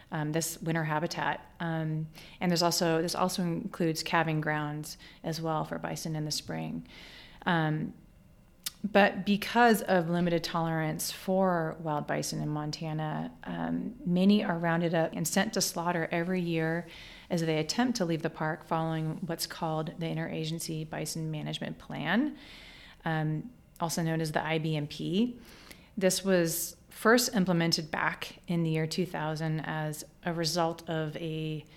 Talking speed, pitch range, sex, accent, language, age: 145 wpm, 155-180 Hz, female, American, English, 30-49